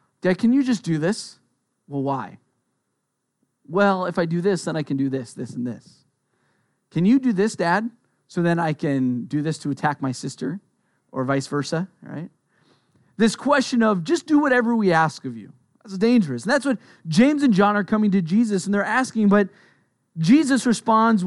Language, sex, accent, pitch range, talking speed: English, male, American, 145-210 Hz, 190 wpm